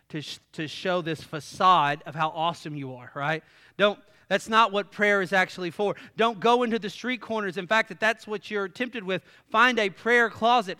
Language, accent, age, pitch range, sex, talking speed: English, American, 40-59, 165-230 Hz, male, 200 wpm